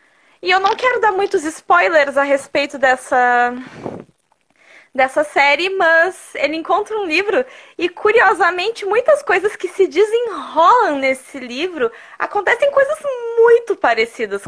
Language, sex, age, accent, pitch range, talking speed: Portuguese, female, 20-39, Brazilian, 275-340 Hz, 125 wpm